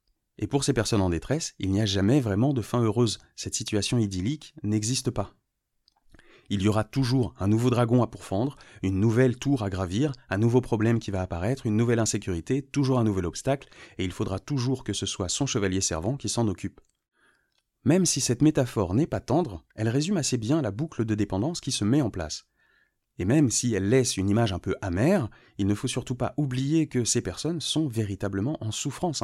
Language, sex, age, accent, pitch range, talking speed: French, male, 30-49, French, 100-130 Hz, 210 wpm